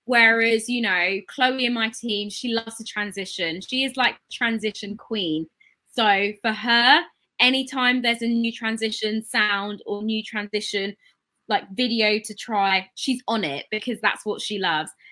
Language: English